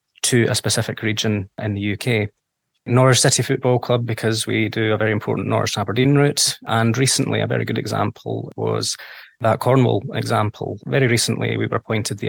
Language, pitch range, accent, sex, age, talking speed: English, 110-125 Hz, British, male, 20-39, 175 wpm